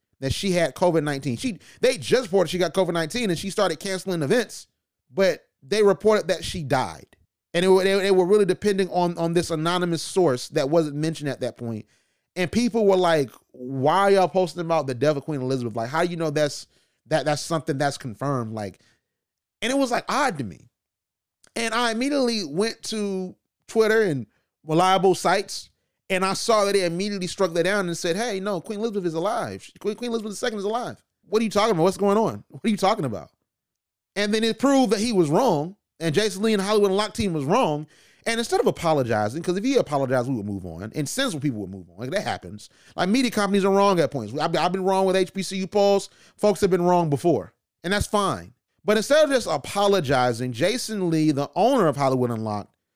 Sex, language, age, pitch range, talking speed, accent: male, English, 30-49, 140-205 Hz, 215 wpm, American